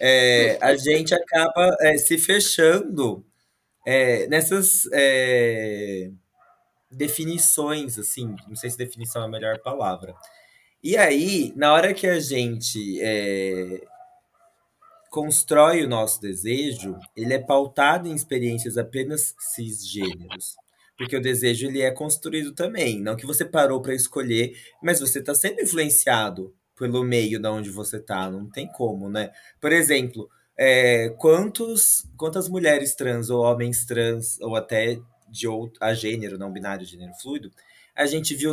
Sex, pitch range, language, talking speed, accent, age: male, 110-150 Hz, Portuguese, 140 wpm, Brazilian, 20-39